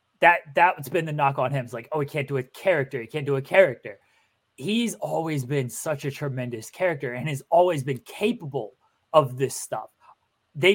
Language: English